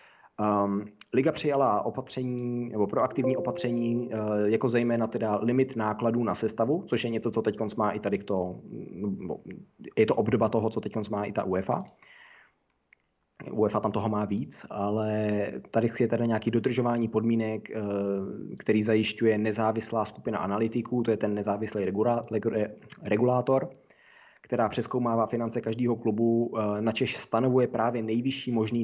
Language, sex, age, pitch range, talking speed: Czech, male, 20-39, 105-125 Hz, 135 wpm